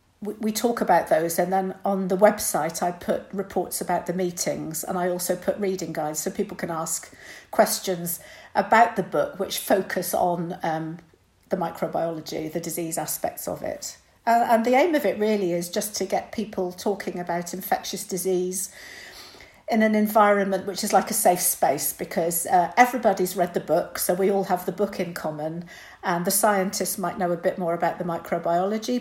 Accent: British